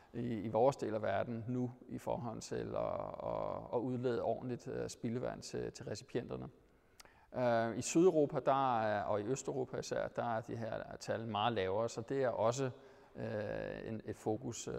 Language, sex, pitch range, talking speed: Danish, male, 115-140 Hz, 150 wpm